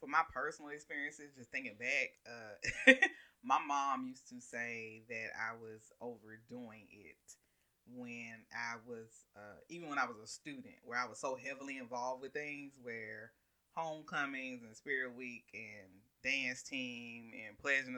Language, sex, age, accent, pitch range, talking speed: English, female, 20-39, American, 120-175 Hz, 155 wpm